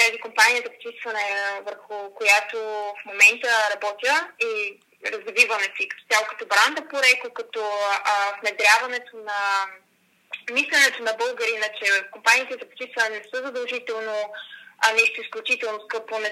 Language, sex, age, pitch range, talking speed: Bulgarian, female, 20-39, 215-290 Hz, 130 wpm